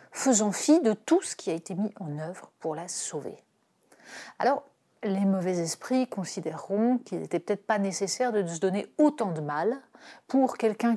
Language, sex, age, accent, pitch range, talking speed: French, female, 40-59, French, 175-245 Hz, 175 wpm